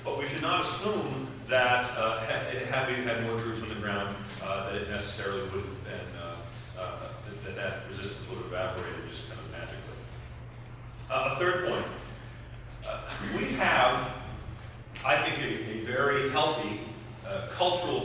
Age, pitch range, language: 40-59, 105-120 Hz, English